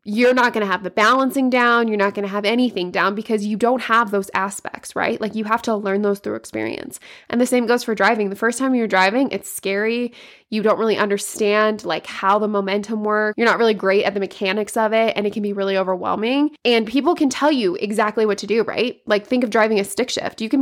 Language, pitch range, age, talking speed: English, 195-230 Hz, 20-39, 250 wpm